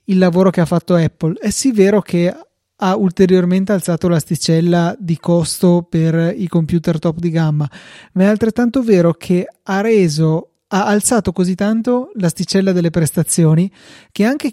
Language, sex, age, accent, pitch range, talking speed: Italian, male, 30-49, native, 160-185 Hz, 155 wpm